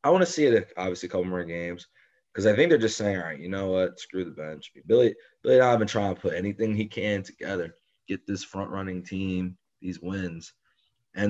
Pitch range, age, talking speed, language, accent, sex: 90-115 Hz, 20-39, 235 wpm, English, American, male